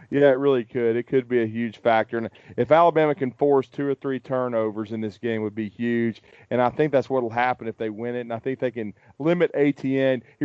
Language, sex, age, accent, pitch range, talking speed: English, male, 30-49, American, 120-140 Hz, 260 wpm